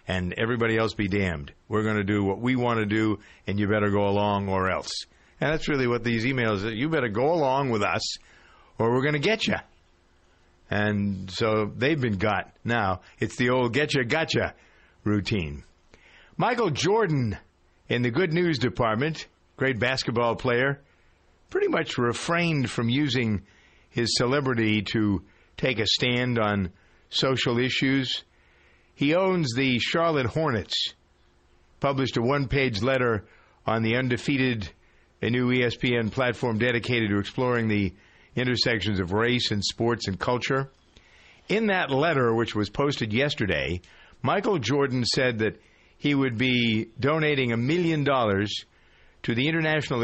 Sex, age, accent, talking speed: male, 50-69, American, 150 wpm